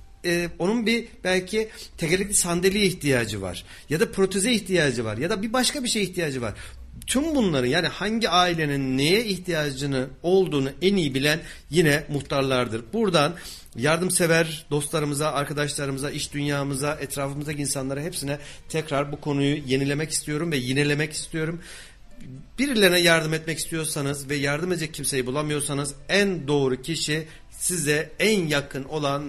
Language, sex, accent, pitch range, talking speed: Turkish, male, native, 135-175 Hz, 135 wpm